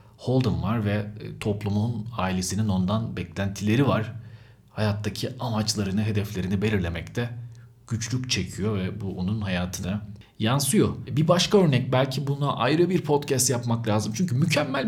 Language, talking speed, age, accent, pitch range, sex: Turkish, 125 wpm, 40-59, native, 100-125 Hz, male